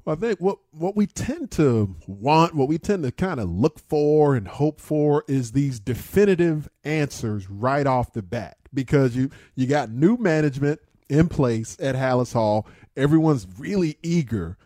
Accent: American